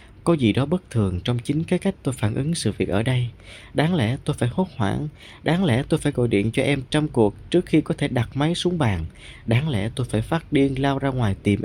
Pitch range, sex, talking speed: 100-140 Hz, male, 260 wpm